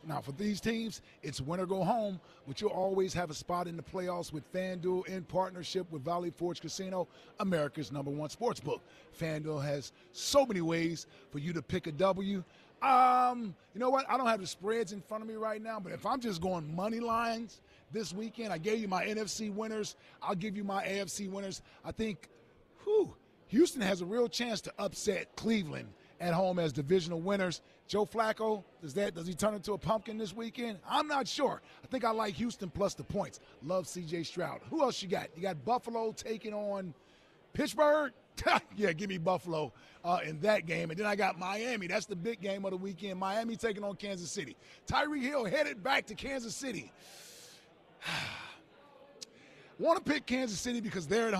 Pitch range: 175-225 Hz